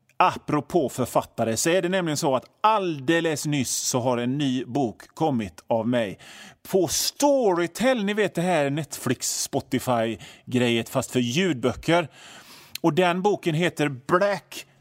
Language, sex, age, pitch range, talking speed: Swedish, male, 30-49, 120-155 Hz, 135 wpm